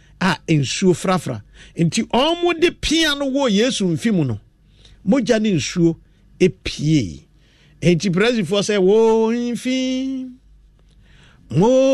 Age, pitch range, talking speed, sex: 50-69, 170-255 Hz, 120 wpm, male